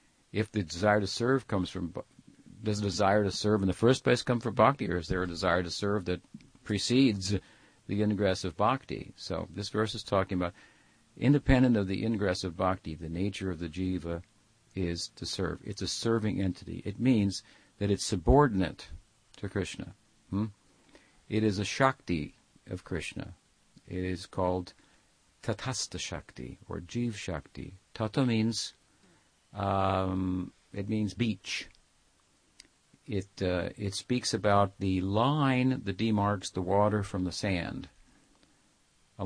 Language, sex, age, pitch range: English, male, 50-69, 95-110 Hz